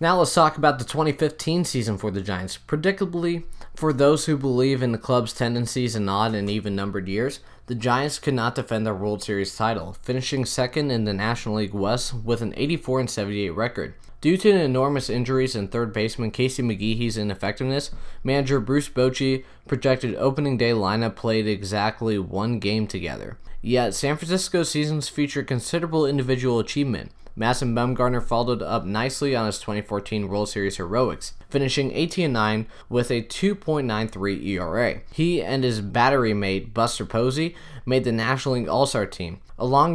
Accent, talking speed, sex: American, 160 wpm, male